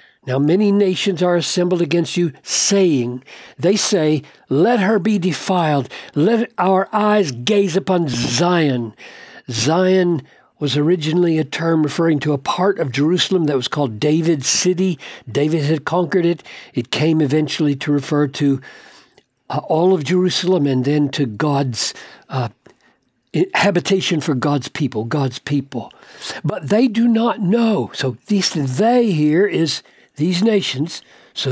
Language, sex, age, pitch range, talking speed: English, male, 60-79, 145-200 Hz, 140 wpm